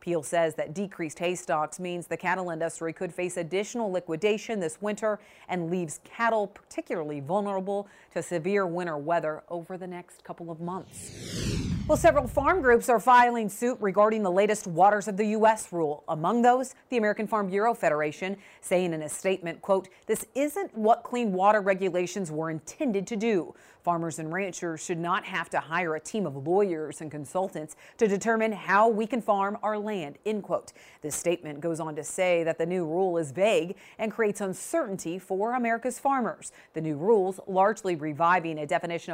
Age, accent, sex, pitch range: 40-59, American, female, 170-220 Hz